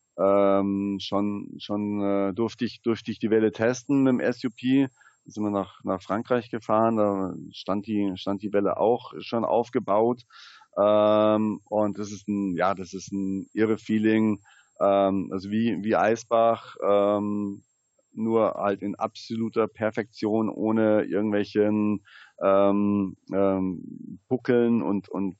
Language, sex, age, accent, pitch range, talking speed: German, male, 40-59, German, 100-110 Hz, 140 wpm